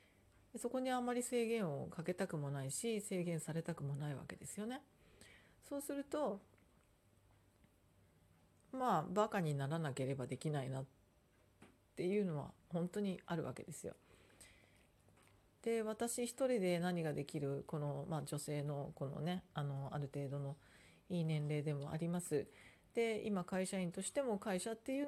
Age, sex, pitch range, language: 40-59, female, 140-195 Hz, Japanese